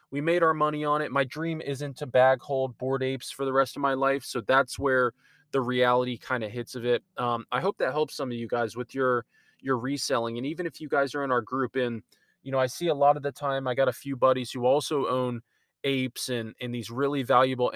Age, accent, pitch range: 20-39, American, 125-140 Hz